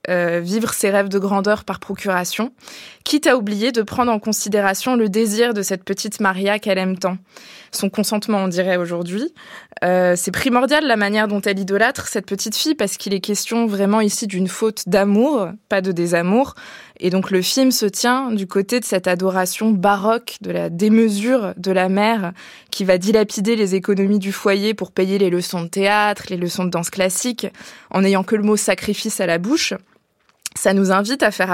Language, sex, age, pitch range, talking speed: French, female, 20-39, 190-230 Hz, 200 wpm